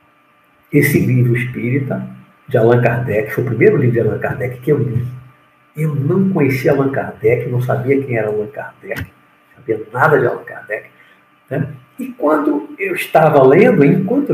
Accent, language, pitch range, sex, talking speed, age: Brazilian, Portuguese, 120-170 Hz, male, 165 wpm, 50-69